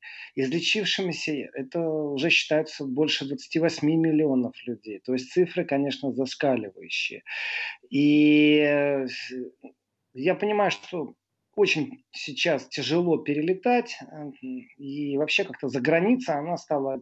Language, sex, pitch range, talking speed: Russian, male, 130-170 Hz, 100 wpm